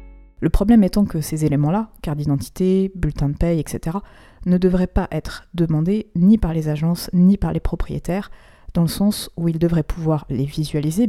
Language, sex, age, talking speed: French, female, 20-39, 185 wpm